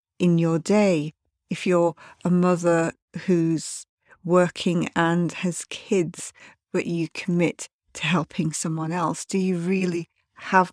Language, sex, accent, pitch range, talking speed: English, female, British, 165-195 Hz, 130 wpm